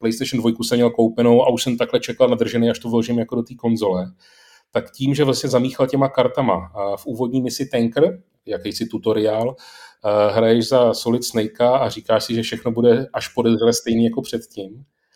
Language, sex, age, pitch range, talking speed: Czech, male, 30-49, 110-125 Hz, 185 wpm